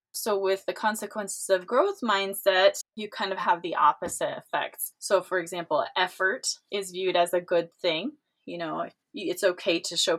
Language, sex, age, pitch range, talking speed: English, female, 20-39, 175-210 Hz, 175 wpm